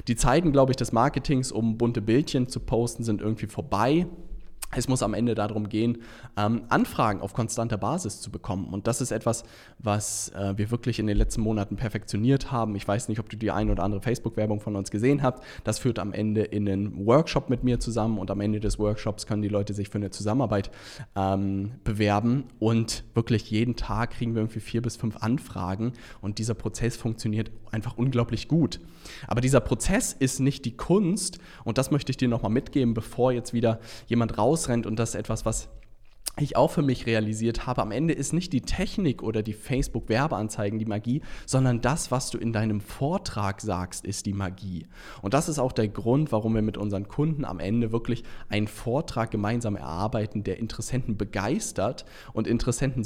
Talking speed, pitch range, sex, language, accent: 190 wpm, 105-125 Hz, male, German, German